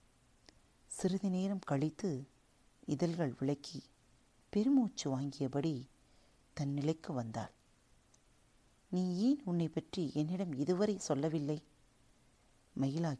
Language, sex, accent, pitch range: Tamil, female, native, 130-180 Hz